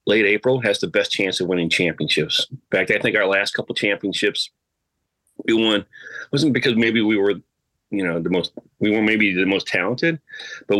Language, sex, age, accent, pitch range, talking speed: English, male, 30-49, American, 90-115 Hz, 195 wpm